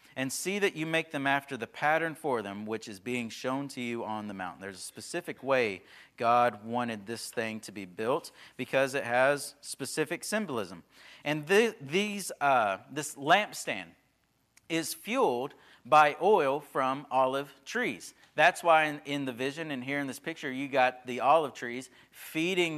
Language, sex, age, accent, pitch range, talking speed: English, male, 40-59, American, 130-160 Hz, 170 wpm